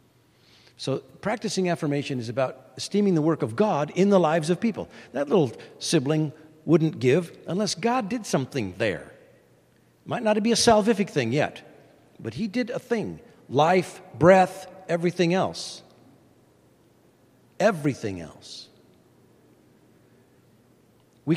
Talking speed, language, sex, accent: 125 wpm, English, male, American